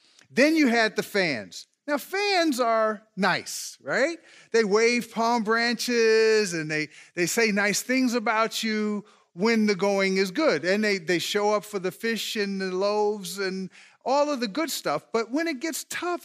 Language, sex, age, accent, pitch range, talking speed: English, male, 40-59, American, 195-255 Hz, 180 wpm